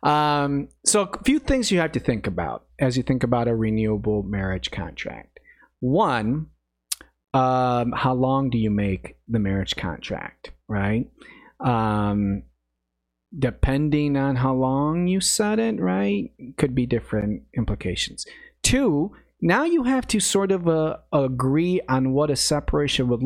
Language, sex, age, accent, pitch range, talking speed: English, male, 30-49, American, 105-145 Hz, 145 wpm